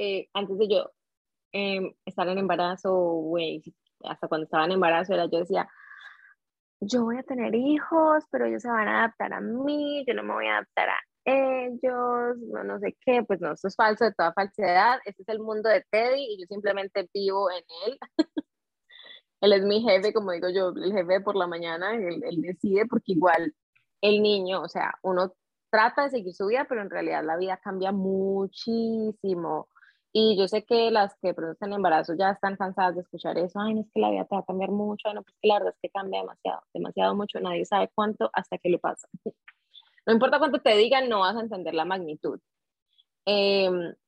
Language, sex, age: English, female, 20-39